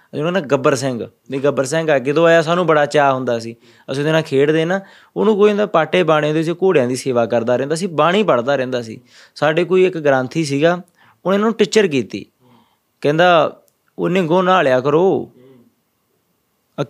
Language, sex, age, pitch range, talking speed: Punjabi, male, 20-39, 130-175 Hz, 185 wpm